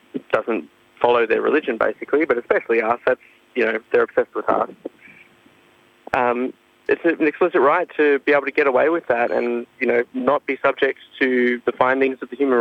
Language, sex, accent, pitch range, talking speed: English, male, Australian, 115-150 Hz, 190 wpm